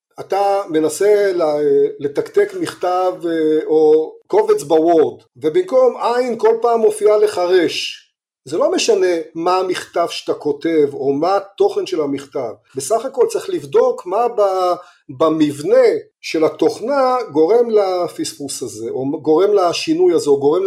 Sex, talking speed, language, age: male, 125 wpm, Hebrew, 40-59